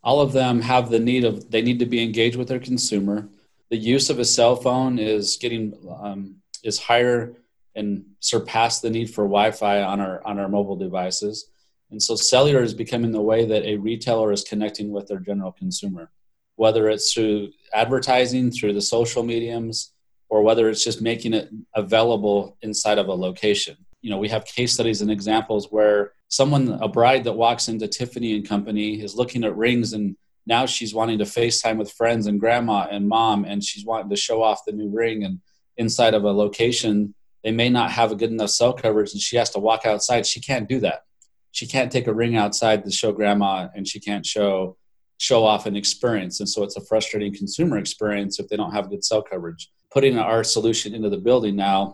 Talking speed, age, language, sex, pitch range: 205 wpm, 30-49, English, male, 105-115 Hz